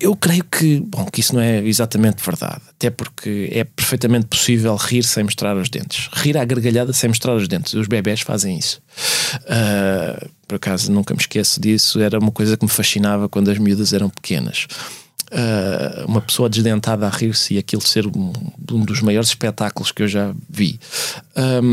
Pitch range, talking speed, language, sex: 115-150 Hz, 180 wpm, Portuguese, male